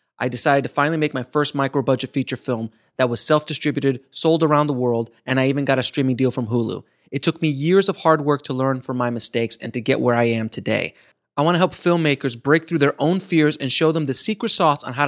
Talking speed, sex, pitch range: 250 wpm, male, 130-155 Hz